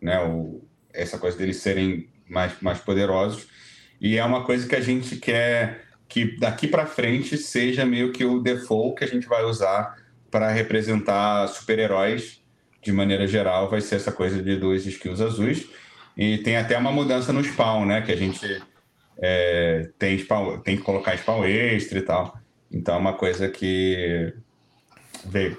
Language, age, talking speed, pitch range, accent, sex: Portuguese, 30-49, 170 wpm, 95-115 Hz, Brazilian, male